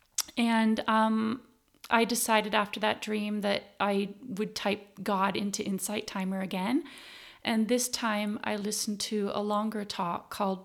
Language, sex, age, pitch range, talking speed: English, female, 30-49, 190-220 Hz, 145 wpm